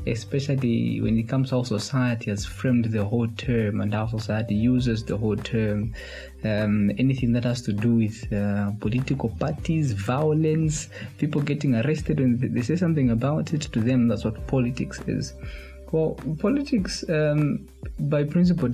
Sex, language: male, English